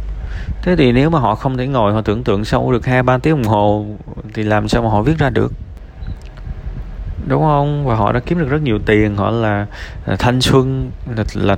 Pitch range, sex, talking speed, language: 90-125 Hz, male, 225 wpm, Vietnamese